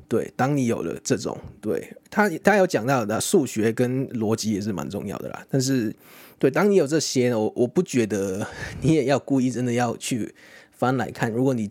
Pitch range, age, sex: 115-145 Hz, 20-39, male